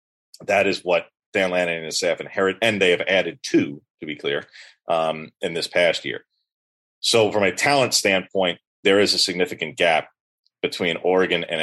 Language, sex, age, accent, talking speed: English, male, 30-49, American, 180 wpm